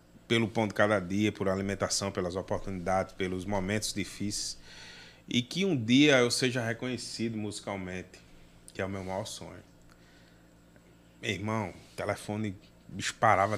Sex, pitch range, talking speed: male, 95-125 Hz, 135 wpm